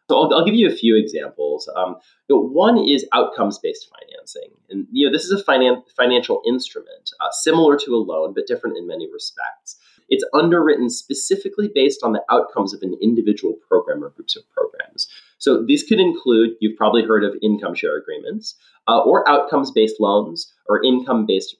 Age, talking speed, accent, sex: 30-49, 170 wpm, American, male